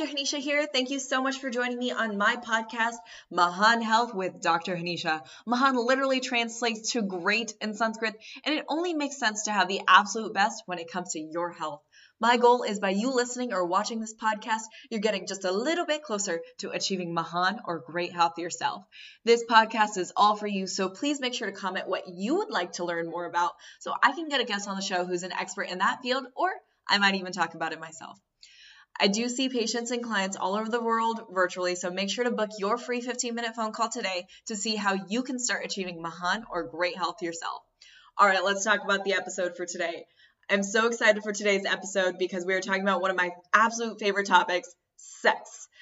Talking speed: 220 wpm